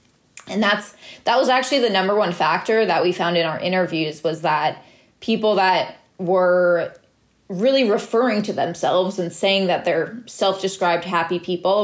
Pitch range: 175-215 Hz